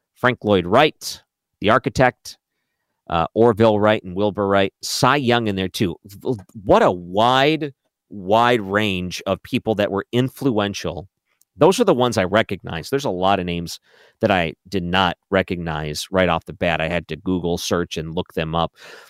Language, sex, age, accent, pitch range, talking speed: English, male, 40-59, American, 90-115 Hz, 175 wpm